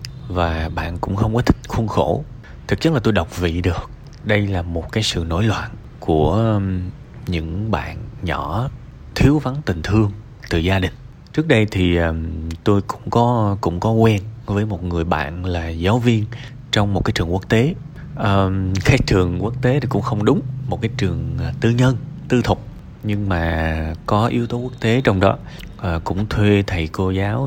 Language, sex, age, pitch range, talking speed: Vietnamese, male, 20-39, 90-115 Hz, 185 wpm